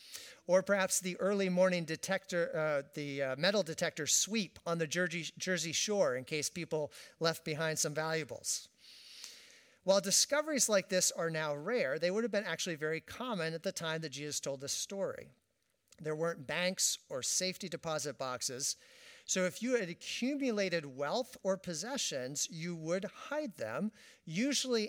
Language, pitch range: English, 160-225 Hz